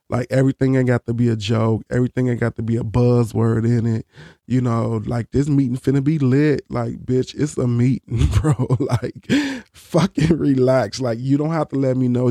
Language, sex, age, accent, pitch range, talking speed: English, male, 20-39, American, 120-140 Hz, 205 wpm